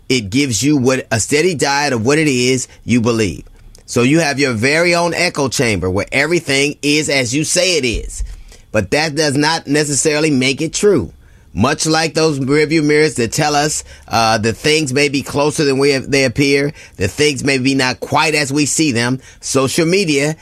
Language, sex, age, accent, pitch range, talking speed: English, male, 30-49, American, 115-150 Hz, 200 wpm